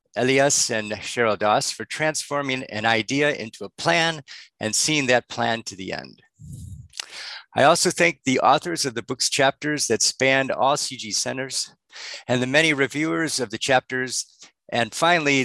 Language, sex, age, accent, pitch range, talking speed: English, male, 50-69, American, 110-140 Hz, 160 wpm